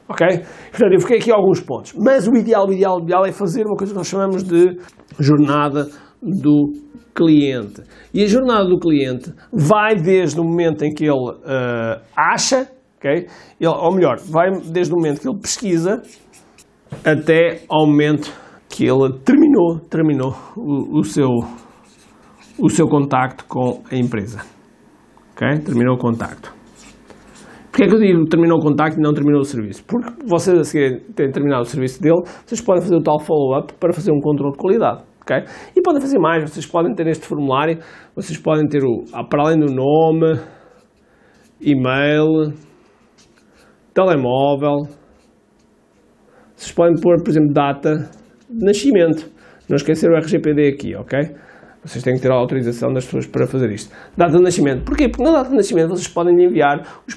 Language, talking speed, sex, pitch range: Portuguese, 165 wpm, male, 145-185 Hz